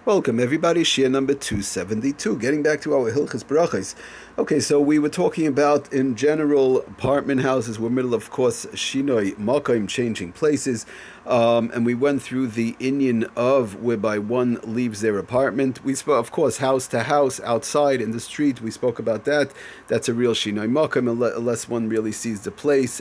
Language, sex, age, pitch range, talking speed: English, male, 30-49, 115-145 Hz, 175 wpm